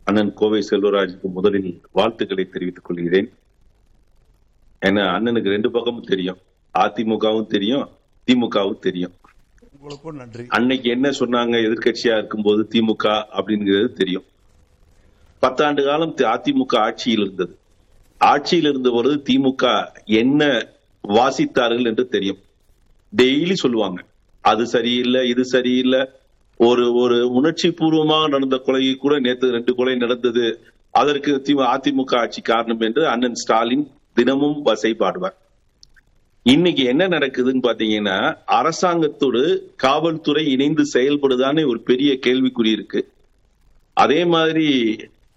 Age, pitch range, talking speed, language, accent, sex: 50-69, 105-140 Hz, 100 wpm, Tamil, native, male